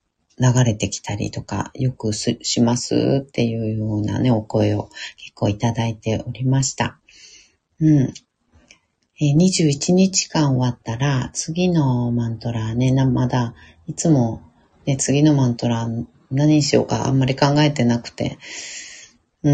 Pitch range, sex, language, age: 115-150 Hz, female, Japanese, 40-59